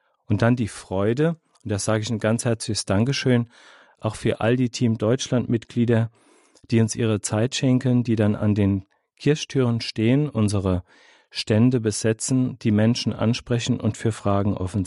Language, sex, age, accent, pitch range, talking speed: German, male, 40-59, German, 105-125 Hz, 160 wpm